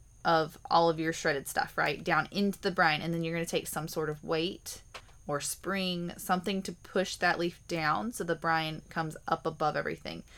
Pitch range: 160-185 Hz